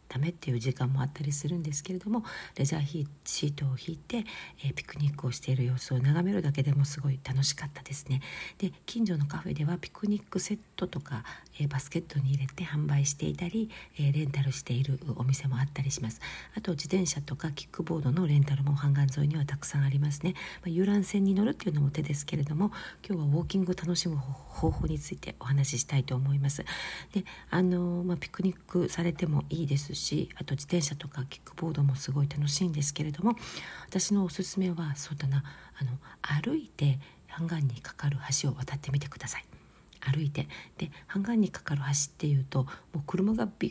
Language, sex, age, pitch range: Japanese, female, 50-69, 140-175 Hz